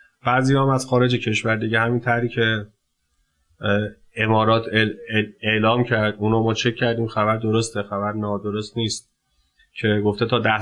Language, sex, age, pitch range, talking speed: Persian, male, 30-49, 110-135 Hz, 135 wpm